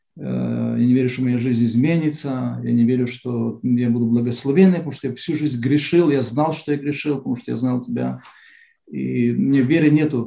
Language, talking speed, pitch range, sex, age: Russian, 200 wpm, 125-150 Hz, male, 40-59